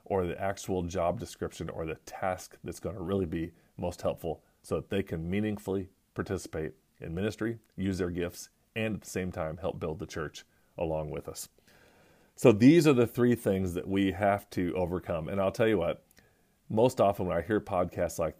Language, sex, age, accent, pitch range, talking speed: English, male, 40-59, American, 85-105 Hz, 200 wpm